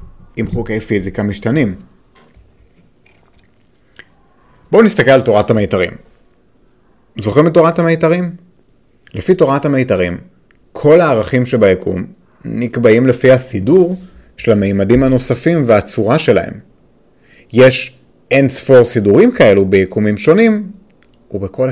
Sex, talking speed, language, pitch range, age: male, 95 wpm, Hebrew, 105-135 Hz, 30-49